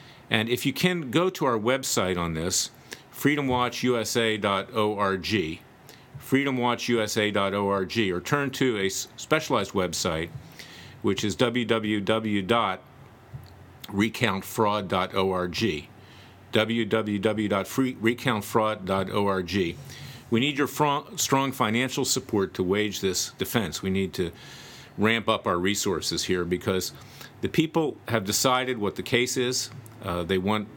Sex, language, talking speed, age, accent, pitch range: male, English, 100 wpm, 50-69, American, 95-125 Hz